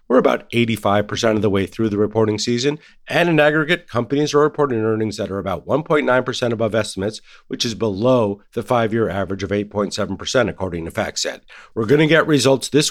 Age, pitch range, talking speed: 50-69, 105-140 Hz, 185 wpm